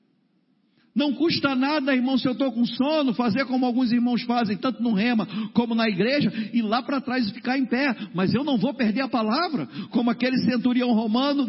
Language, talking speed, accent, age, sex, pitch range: Portuguese, 205 wpm, Brazilian, 50-69, male, 215-255 Hz